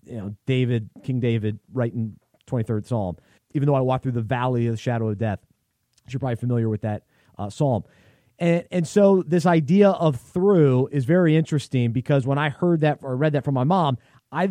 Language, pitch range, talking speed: English, 130-170 Hz, 205 wpm